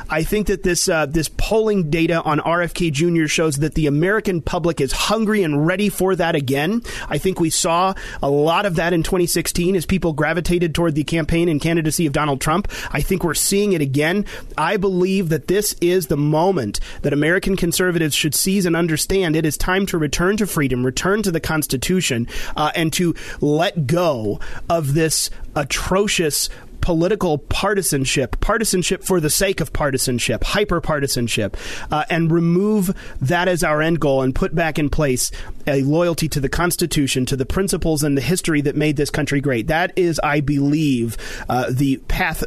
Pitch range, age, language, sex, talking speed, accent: 145-180 Hz, 30-49, English, male, 180 wpm, American